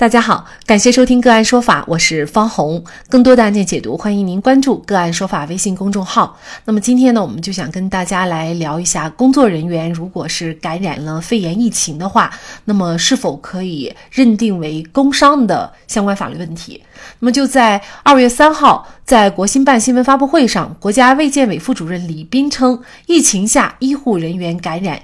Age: 30-49